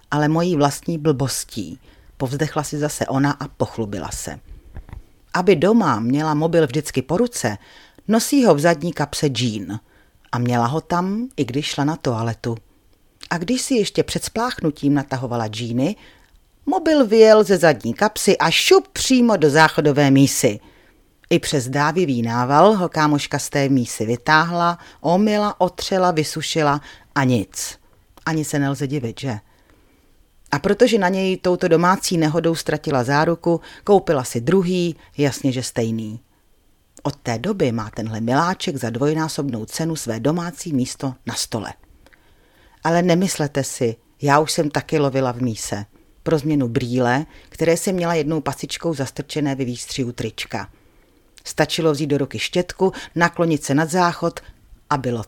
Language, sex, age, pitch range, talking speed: Czech, female, 40-59, 125-170 Hz, 145 wpm